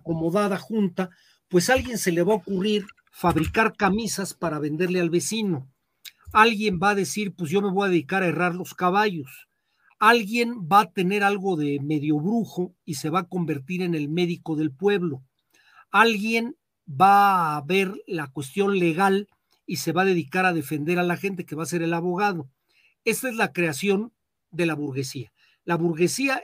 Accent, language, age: Mexican, Spanish, 50-69